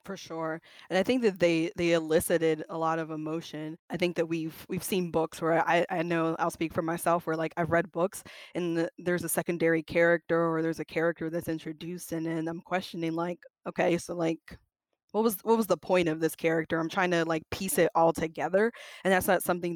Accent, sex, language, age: American, female, English, 20-39